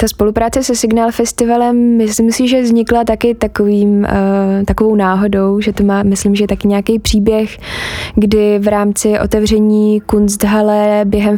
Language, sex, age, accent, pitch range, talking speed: Czech, female, 20-39, native, 200-215 Hz, 140 wpm